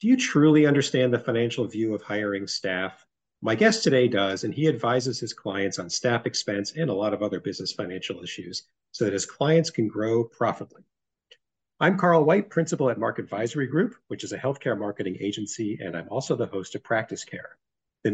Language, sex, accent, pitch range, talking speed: English, male, American, 105-150 Hz, 200 wpm